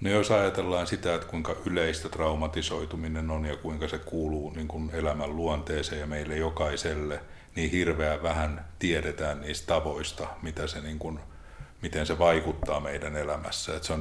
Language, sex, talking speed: Finnish, male, 165 wpm